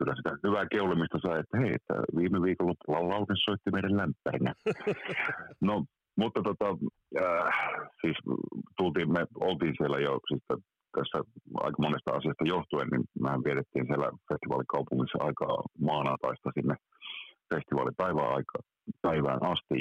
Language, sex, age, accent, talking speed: Finnish, male, 50-69, native, 120 wpm